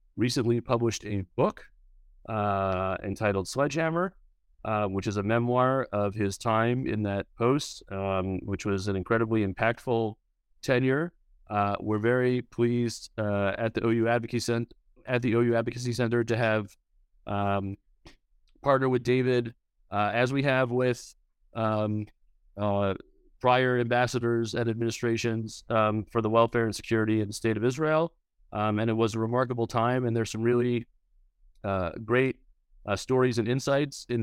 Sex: male